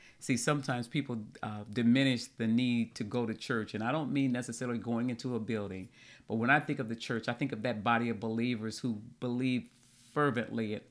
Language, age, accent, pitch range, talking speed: English, 40-59, American, 115-145 Hz, 210 wpm